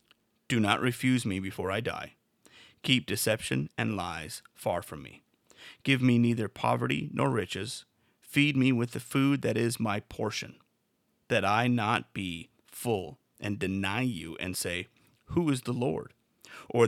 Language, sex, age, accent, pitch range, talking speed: English, male, 30-49, American, 95-125 Hz, 155 wpm